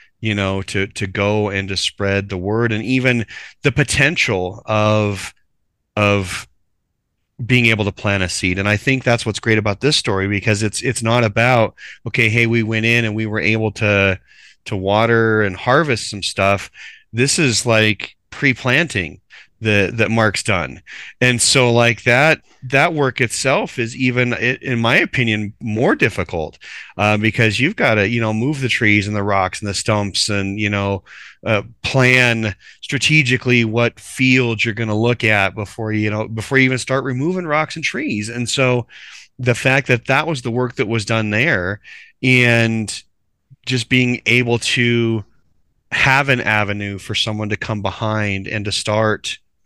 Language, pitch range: English, 105-125 Hz